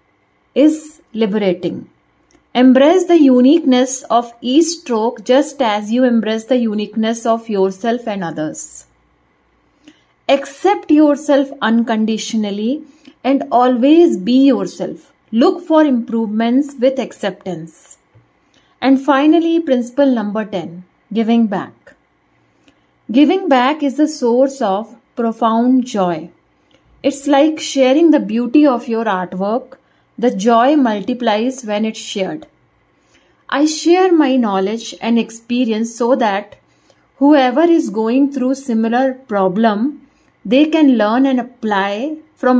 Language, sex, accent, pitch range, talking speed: English, female, Indian, 215-275 Hz, 110 wpm